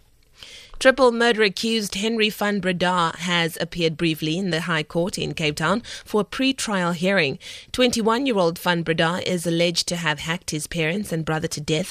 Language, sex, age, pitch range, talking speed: English, female, 20-39, 165-210 Hz, 170 wpm